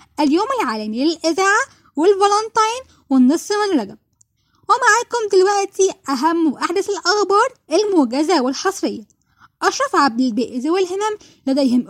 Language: Arabic